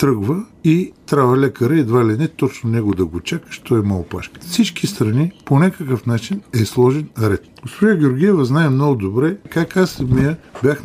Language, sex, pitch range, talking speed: Bulgarian, male, 105-145 Hz, 185 wpm